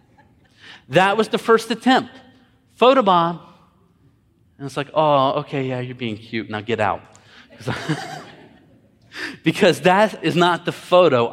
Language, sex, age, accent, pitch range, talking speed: English, male, 30-49, American, 120-165 Hz, 125 wpm